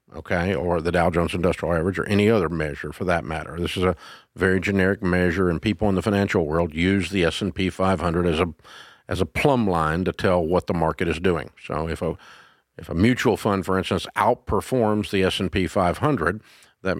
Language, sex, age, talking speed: English, male, 50-69, 200 wpm